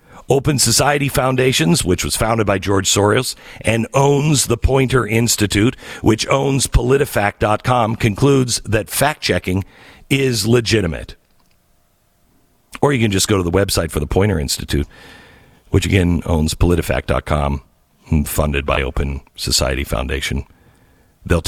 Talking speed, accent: 125 wpm, American